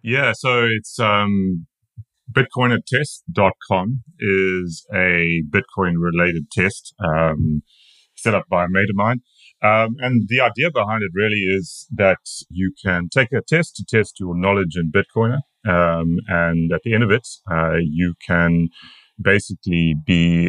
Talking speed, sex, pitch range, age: 145 wpm, male, 85-110 Hz, 30-49